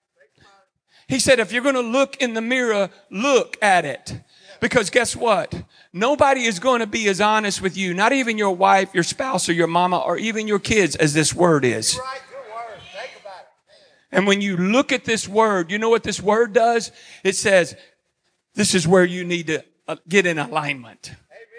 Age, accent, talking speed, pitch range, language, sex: 40-59, American, 185 wpm, 175-225 Hz, English, male